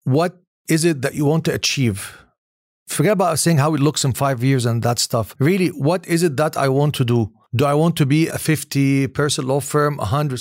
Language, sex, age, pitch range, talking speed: English, male, 40-59, 130-160 Hz, 230 wpm